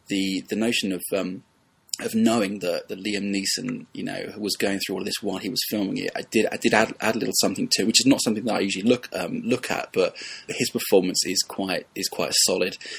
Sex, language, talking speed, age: male, English, 245 wpm, 20-39